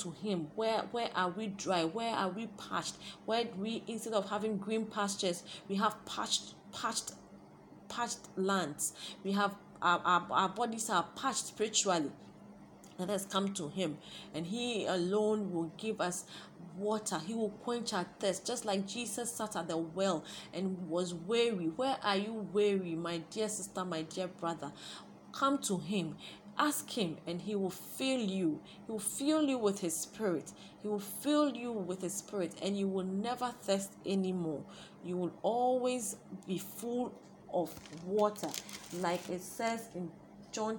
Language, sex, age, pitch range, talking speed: English, female, 30-49, 175-220 Hz, 165 wpm